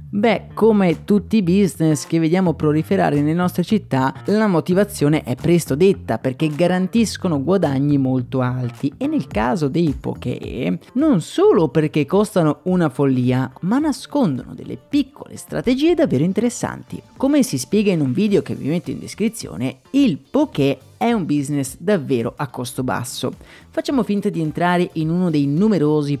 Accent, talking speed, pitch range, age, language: native, 155 wpm, 145-205 Hz, 30-49, Italian